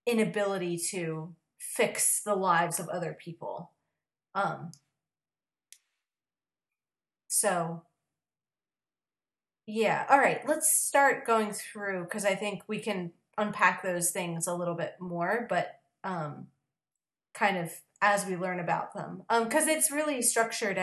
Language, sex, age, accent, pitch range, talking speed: English, female, 30-49, American, 180-215 Hz, 125 wpm